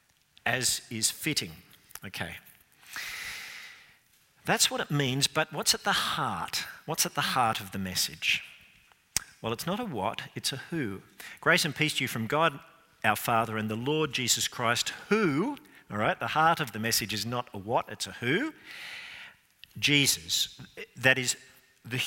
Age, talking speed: 50-69, 165 wpm